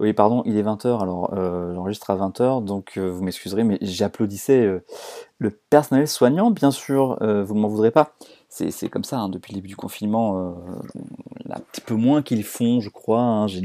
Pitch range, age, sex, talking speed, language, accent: 95-120 Hz, 30-49, male, 225 wpm, French, French